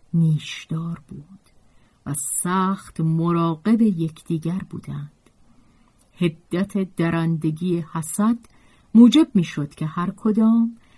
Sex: female